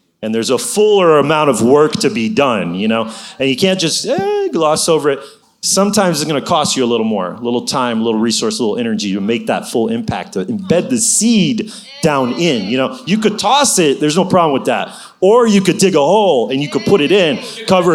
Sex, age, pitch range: male, 30-49, 115-195 Hz